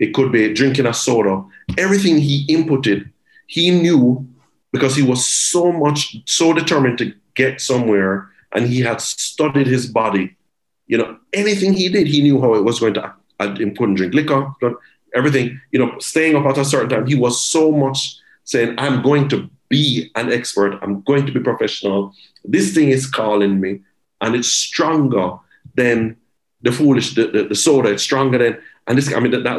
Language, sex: English, male